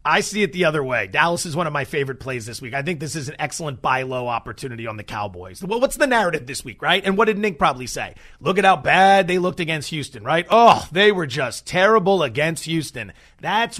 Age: 30-49